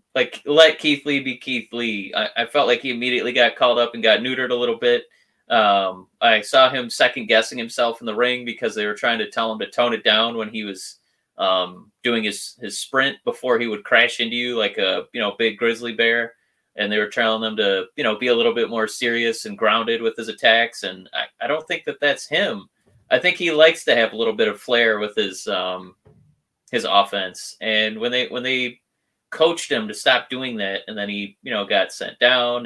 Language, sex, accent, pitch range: English, male, American, 110-145 Hz